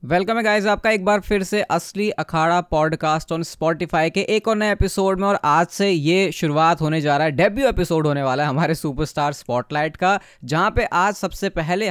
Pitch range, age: 150-185 Hz, 20-39